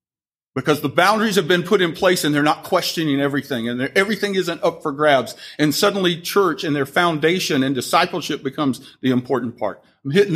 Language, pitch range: English, 145-180 Hz